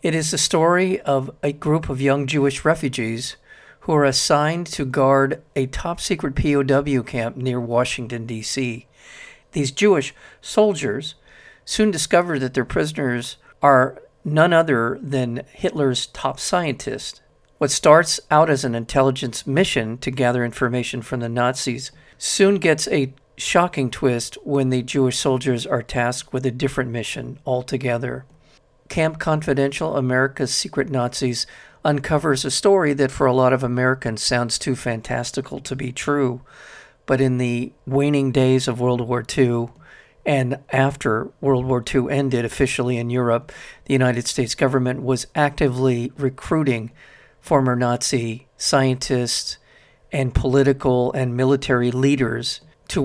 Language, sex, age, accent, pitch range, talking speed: English, male, 50-69, American, 125-140 Hz, 140 wpm